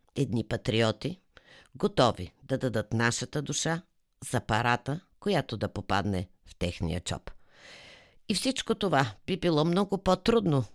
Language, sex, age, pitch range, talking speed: Bulgarian, female, 50-69, 100-160 Hz, 125 wpm